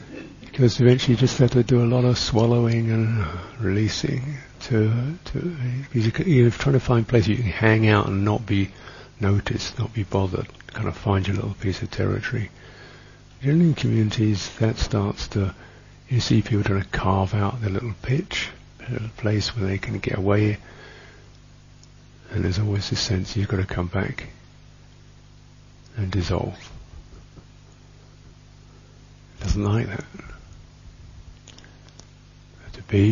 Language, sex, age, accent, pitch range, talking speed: English, male, 50-69, British, 100-130 Hz, 150 wpm